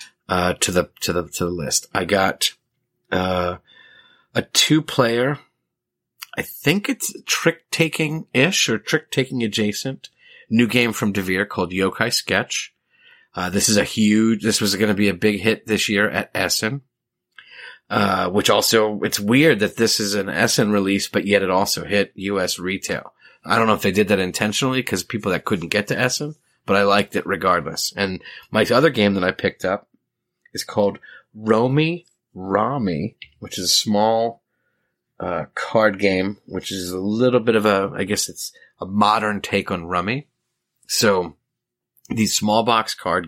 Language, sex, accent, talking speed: English, male, American, 175 wpm